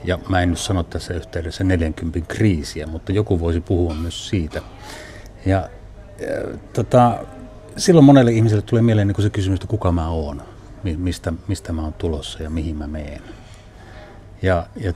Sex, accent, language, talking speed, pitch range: male, native, Finnish, 165 wpm, 85-100 Hz